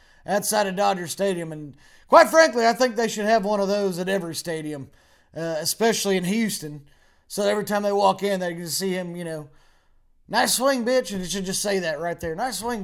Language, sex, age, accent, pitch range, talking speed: English, male, 20-39, American, 155-210 Hz, 220 wpm